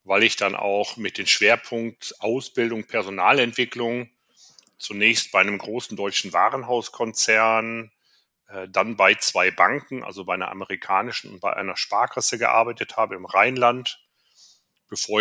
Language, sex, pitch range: German, male, 100-120 Hz